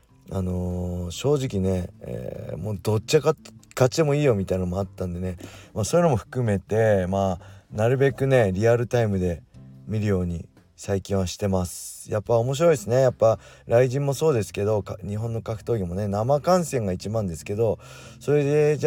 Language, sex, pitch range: Japanese, male, 95-120 Hz